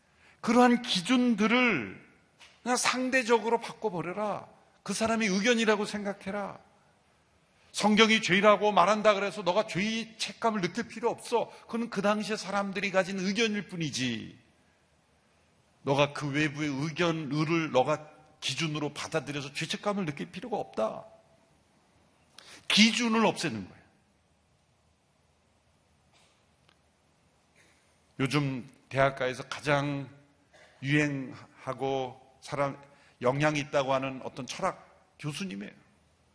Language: Korean